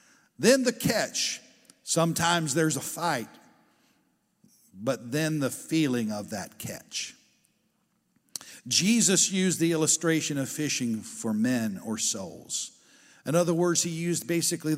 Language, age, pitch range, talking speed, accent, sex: English, 50-69, 140-190 Hz, 120 wpm, American, male